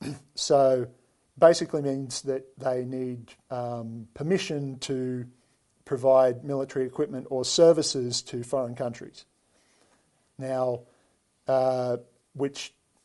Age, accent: 50-69, Australian